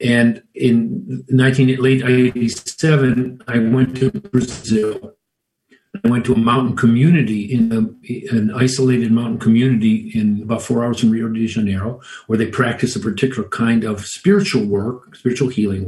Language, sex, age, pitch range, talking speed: English, male, 50-69, 110-130 Hz, 155 wpm